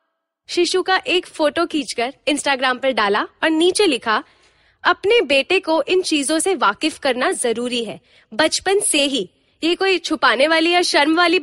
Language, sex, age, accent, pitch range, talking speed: Hindi, female, 20-39, native, 260-355 Hz, 160 wpm